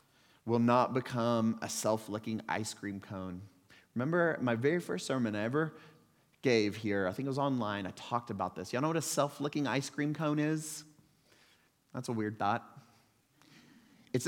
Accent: American